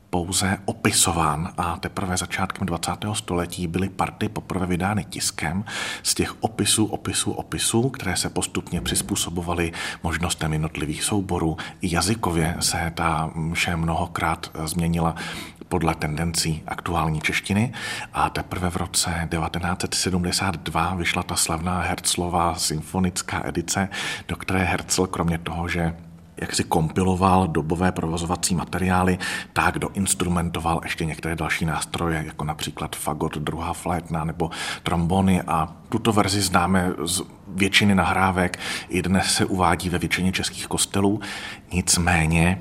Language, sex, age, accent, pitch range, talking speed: Czech, male, 40-59, native, 85-95 Hz, 125 wpm